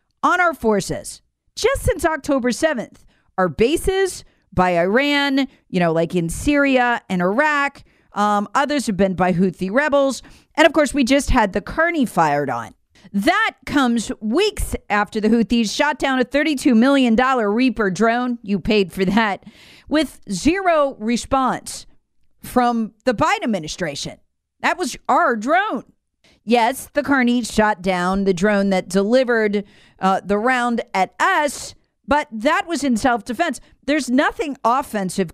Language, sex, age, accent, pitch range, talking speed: English, female, 40-59, American, 195-285 Hz, 145 wpm